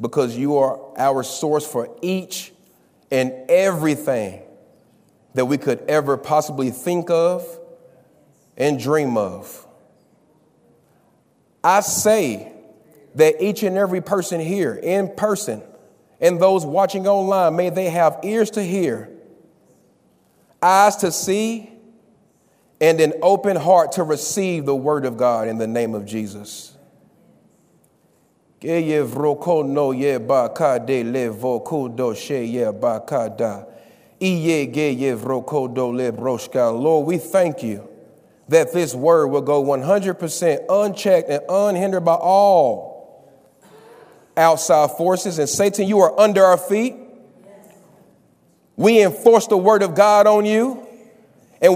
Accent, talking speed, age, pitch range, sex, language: American, 105 wpm, 40-59, 145-205 Hz, male, English